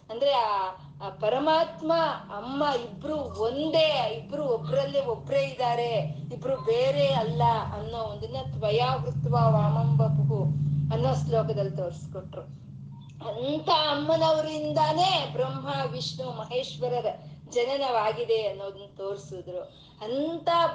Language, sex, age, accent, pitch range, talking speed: Kannada, female, 20-39, native, 205-295 Hz, 85 wpm